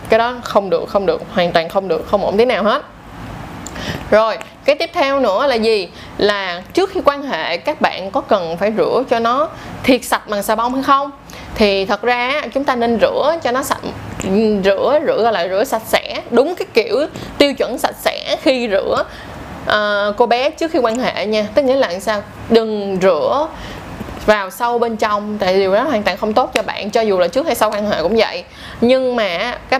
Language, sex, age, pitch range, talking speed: Vietnamese, female, 20-39, 205-275 Hz, 215 wpm